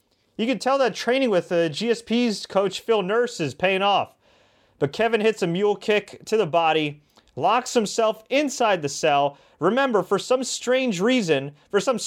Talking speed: 175 wpm